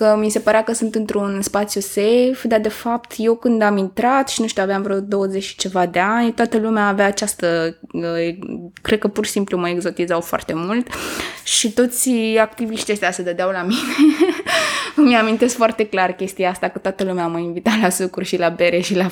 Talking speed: 200 wpm